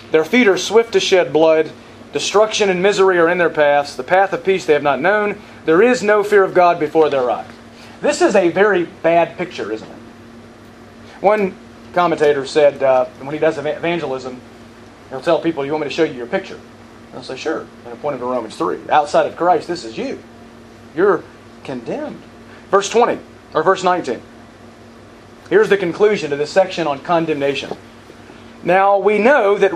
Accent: American